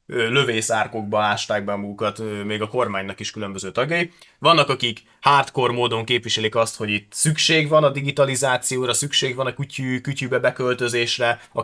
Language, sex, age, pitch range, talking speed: Hungarian, male, 20-39, 115-145 Hz, 150 wpm